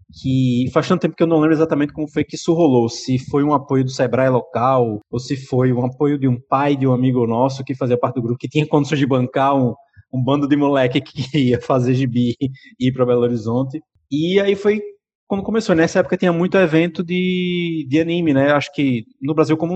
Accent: Brazilian